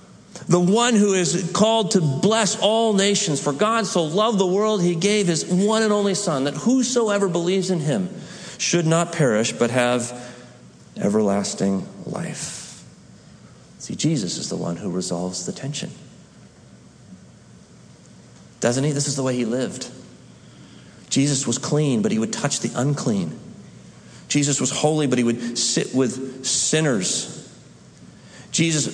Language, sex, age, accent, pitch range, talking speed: English, male, 40-59, American, 130-190 Hz, 145 wpm